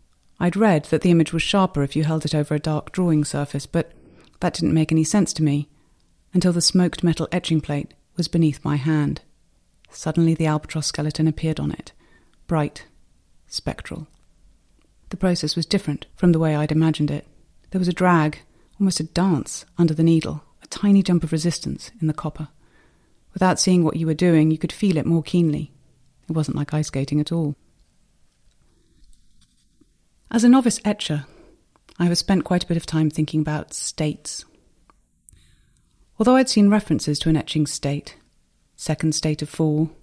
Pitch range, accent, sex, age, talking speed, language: 150-175 Hz, British, female, 30-49, 175 wpm, English